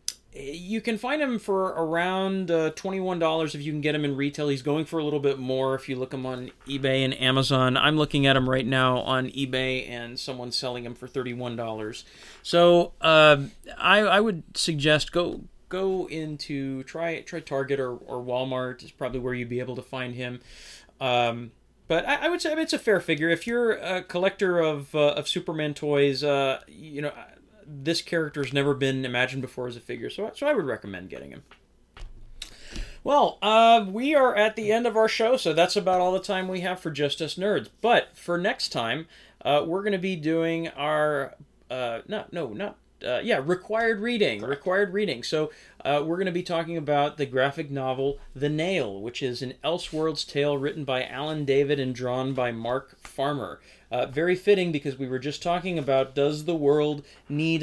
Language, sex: English, male